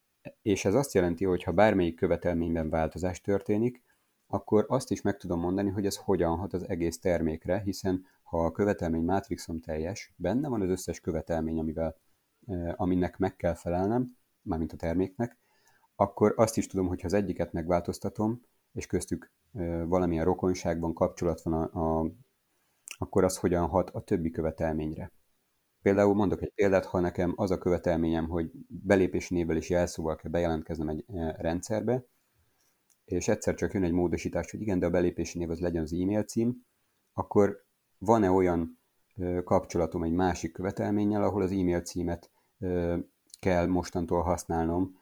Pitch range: 85-100 Hz